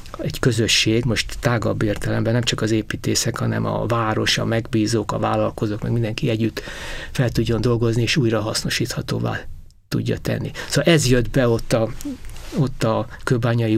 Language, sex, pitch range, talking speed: Hungarian, male, 115-135 Hz, 155 wpm